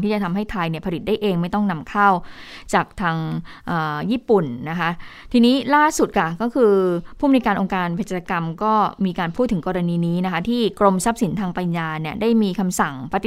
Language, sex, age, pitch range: Thai, female, 20-39, 180-225 Hz